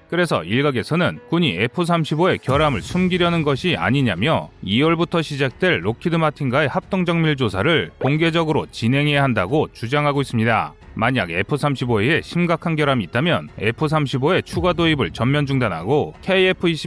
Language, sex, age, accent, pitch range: Korean, male, 30-49, native, 120-160 Hz